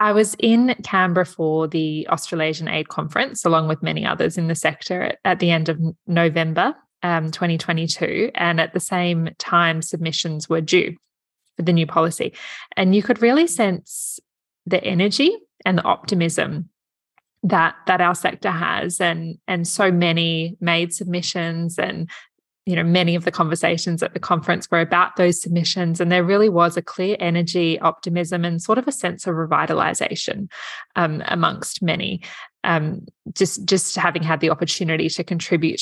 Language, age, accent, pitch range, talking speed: English, 20-39, Australian, 165-190 Hz, 160 wpm